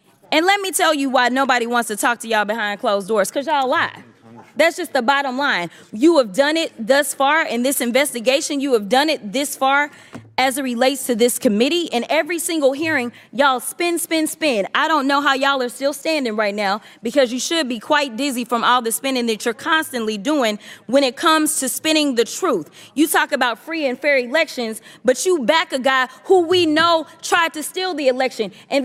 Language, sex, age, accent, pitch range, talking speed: English, female, 20-39, American, 255-330 Hz, 215 wpm